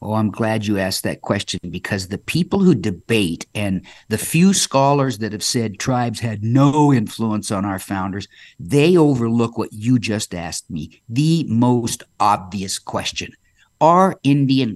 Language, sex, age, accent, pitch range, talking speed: English, male, 50-69, American, 105-135 Hz, 165 wpm